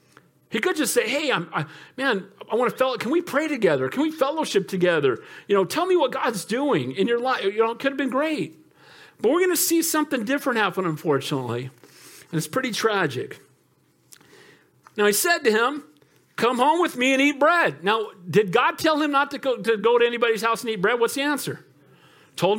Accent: American